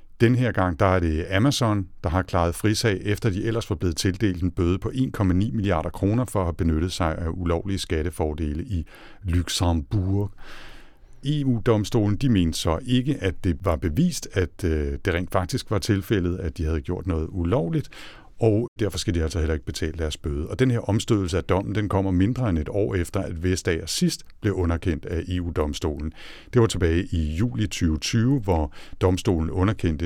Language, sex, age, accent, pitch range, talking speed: Danish, male, 60-79, native, 85-105 Hz, 180 wpm